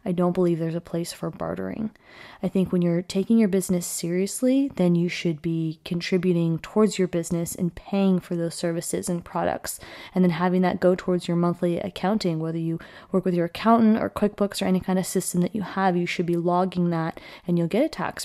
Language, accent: English, American